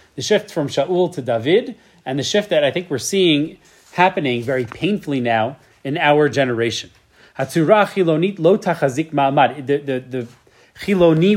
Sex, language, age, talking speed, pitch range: male, English, 30-49, 130 wpm, 135-185 Hz